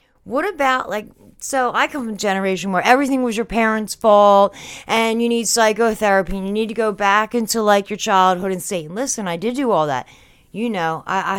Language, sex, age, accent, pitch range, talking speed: English, female, 40-59, American, 170-225 Hz, 215 wpm